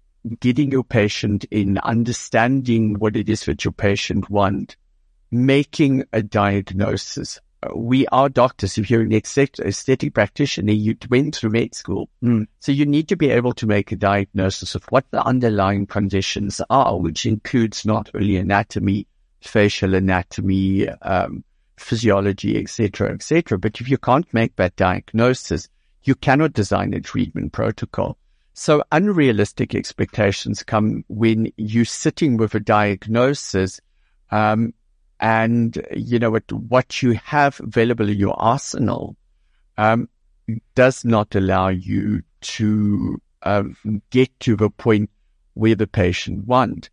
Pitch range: 100-130 Hz